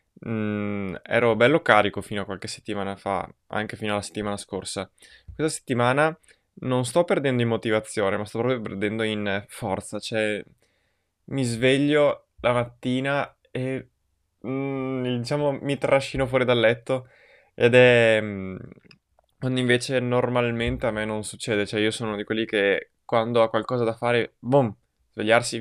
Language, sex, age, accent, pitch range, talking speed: Italian, male, 20-39, native, 105-125 Hz, 150 wpm